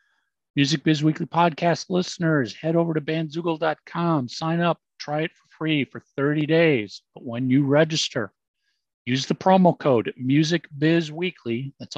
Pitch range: 130-165 Hz